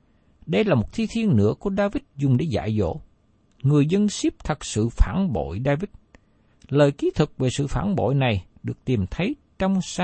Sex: male